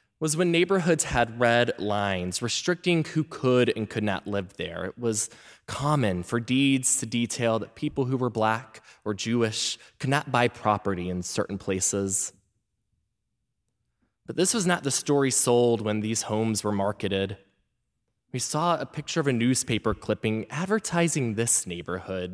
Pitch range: 105-150 Hz